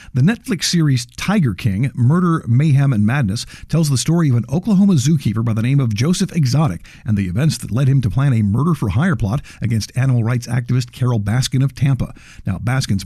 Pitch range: 115-150 Hz